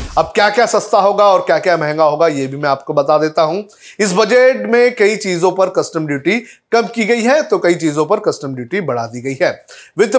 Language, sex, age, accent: Hindi, male, 30-49, native